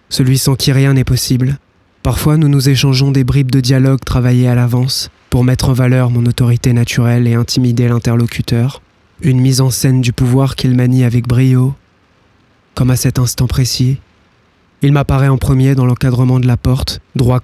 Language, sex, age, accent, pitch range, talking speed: French, male, 20-39, French, 120-135 Hz, 180 wpm